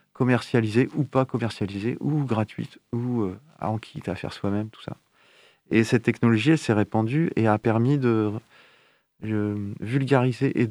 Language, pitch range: French, 105-120 Hz